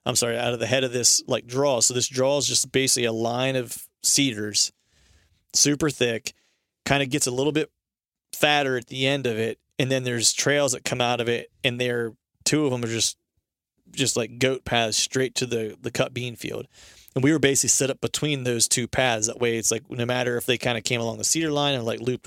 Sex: male